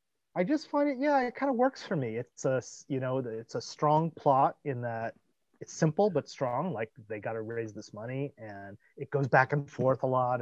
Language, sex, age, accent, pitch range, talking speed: English, male, 30-49, American, 115-150 Hz, 230 wpm